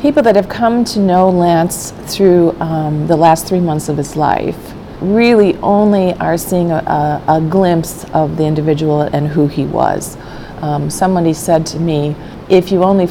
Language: English